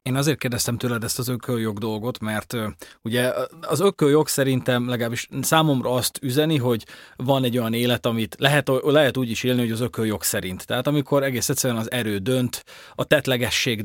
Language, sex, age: Hungarian, male, 30-49